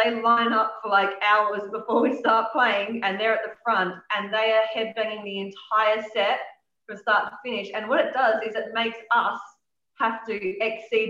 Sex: female